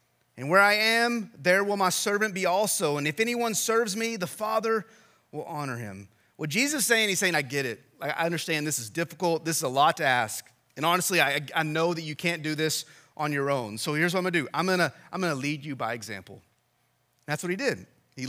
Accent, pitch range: American, 130-185 Hz